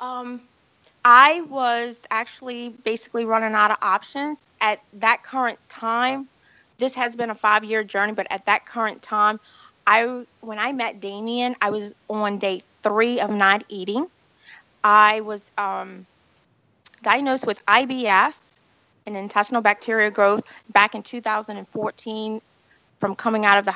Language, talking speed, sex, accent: English, 140 wpm, female, American